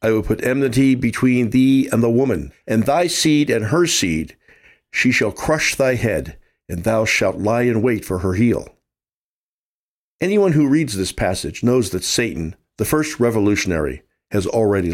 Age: 50-69